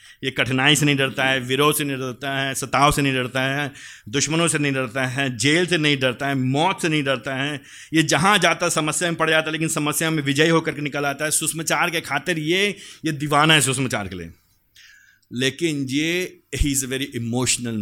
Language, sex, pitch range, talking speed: Hindi, male, 125-155 Hz, 220 wpm